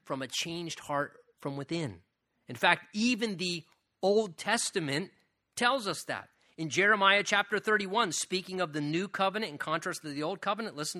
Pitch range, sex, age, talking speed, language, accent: 150-210 Hz, male, 30-49, 170 wpm, English, American